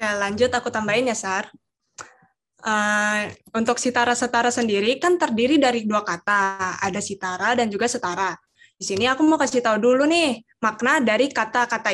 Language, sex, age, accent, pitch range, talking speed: Indonesian, female, 10-29, native, 205-255 Hz, 155 wpm